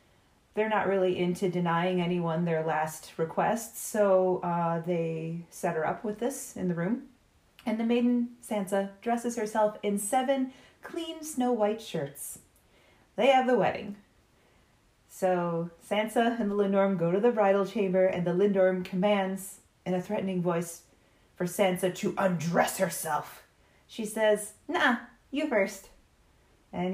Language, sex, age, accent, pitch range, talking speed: English, female, 30-49, American, 175-225 Hz, 145 wpm